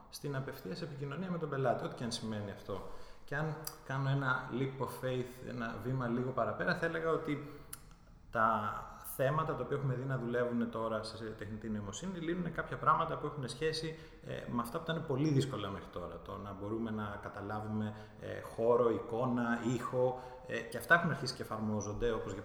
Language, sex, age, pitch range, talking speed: Greek, male, 20-39, 105-145 Hz, 180 wpm